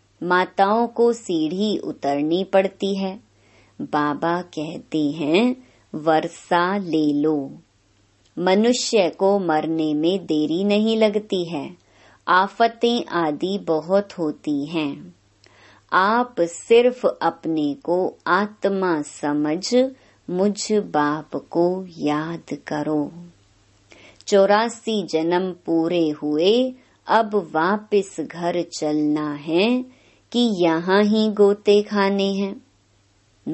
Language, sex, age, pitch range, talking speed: Hindi, male, 30-49, 150-200 Hz, 90 wpm